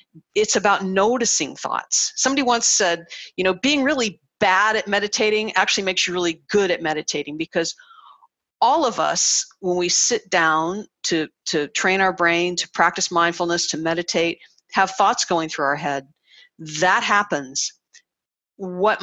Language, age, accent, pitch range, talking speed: English, 50-69, American, 170-210 Hz, 150 wpm